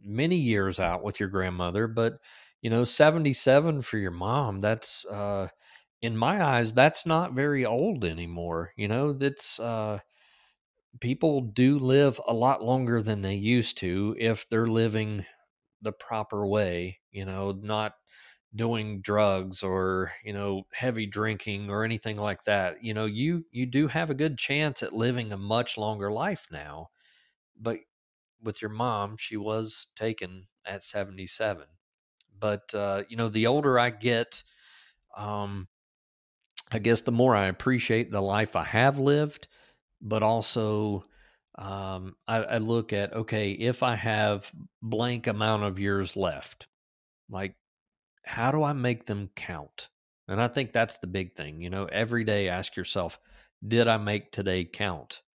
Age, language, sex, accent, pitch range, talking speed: 40-59, English, male, American, 100-120 Hz, 155 wpm